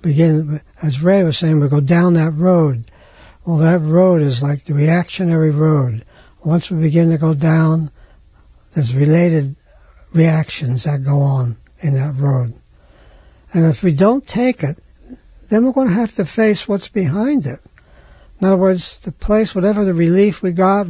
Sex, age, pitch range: male, 60-79, 150-200 Hz